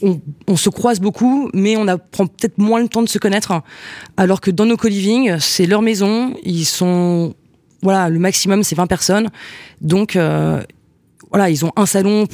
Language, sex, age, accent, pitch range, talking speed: French, female, 20-39, French, 160-195 Hz, 190 wpm